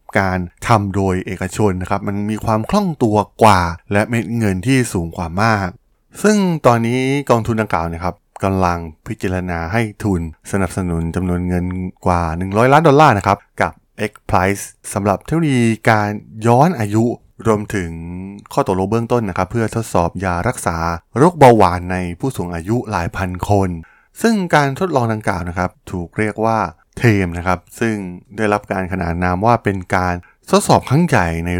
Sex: male